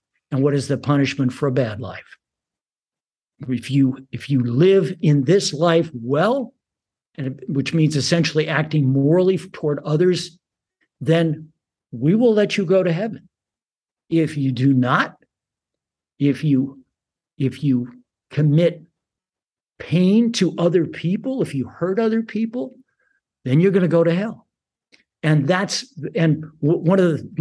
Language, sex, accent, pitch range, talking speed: English, male, American, 150-195 Hz, 145 wpm